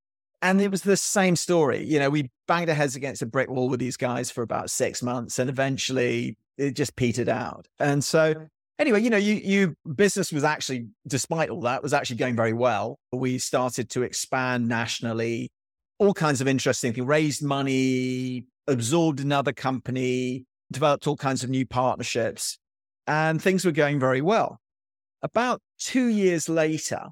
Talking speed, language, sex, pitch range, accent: 175 wpm, English, male, 125-155 Hz, British